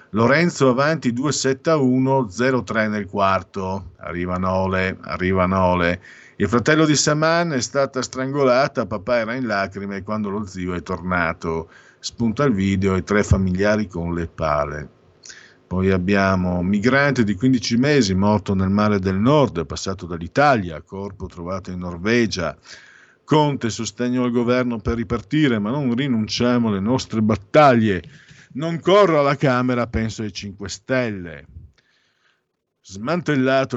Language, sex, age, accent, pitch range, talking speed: Italian, male, 50-69, native, 90-125 Hz, 130 wpm